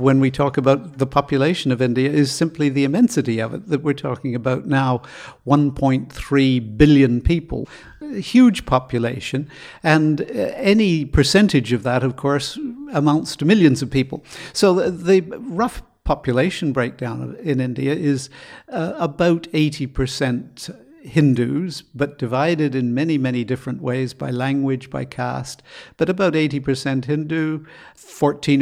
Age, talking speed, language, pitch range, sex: 60-79, 140 wpm, English, 130-155 Hz, male